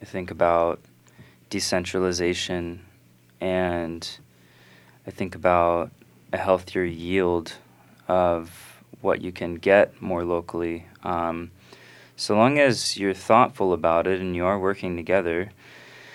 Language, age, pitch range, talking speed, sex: English, 20-39, 85-100 Hz, 115 wpm, male